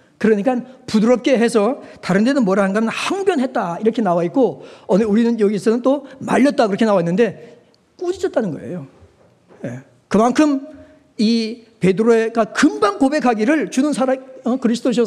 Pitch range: 215-290 Hz